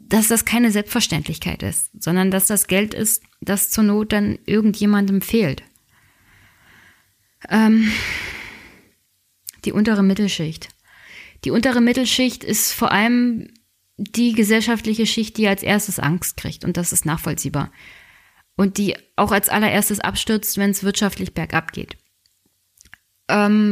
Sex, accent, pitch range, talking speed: female, German, 185-220 Hz, 125 wpm